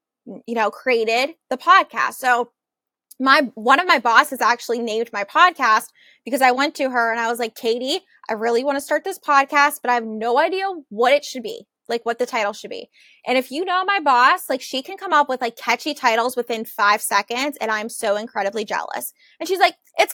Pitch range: 240-300 Hz